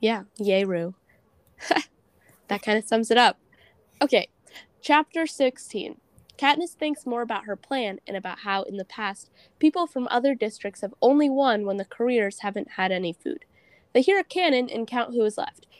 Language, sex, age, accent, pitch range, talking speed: English, female, 10-29, American, 200-275 Hz, 180 wpm